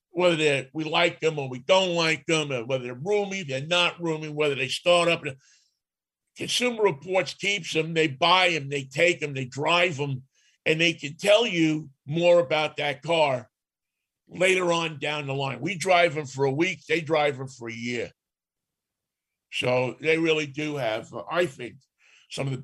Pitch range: 135-175 Hz